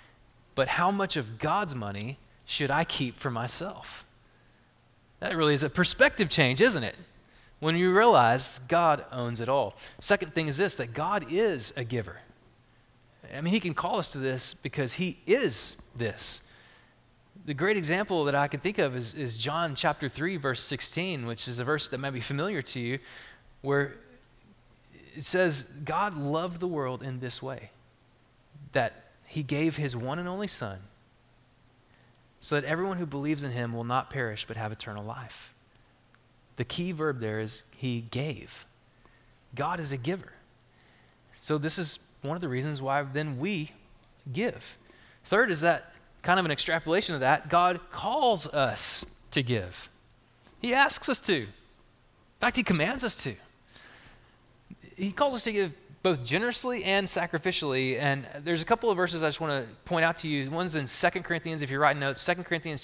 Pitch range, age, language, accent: 125-175 Hz, 20-39, English, American